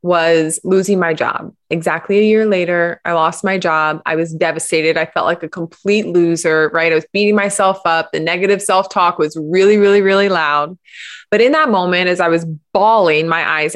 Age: 20-39